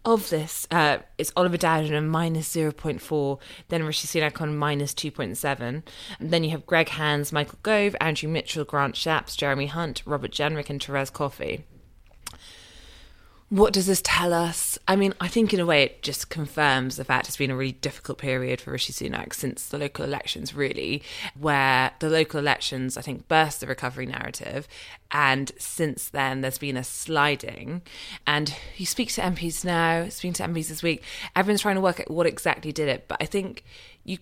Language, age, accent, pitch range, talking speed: English, 20-39, British, 145-170 Hz, 185 wpm